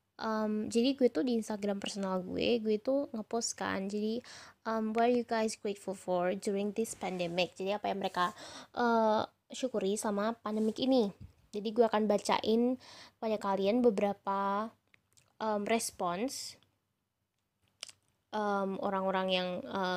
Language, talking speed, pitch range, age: Indonesian, 130 wpm, 195-235 Hz, 10-29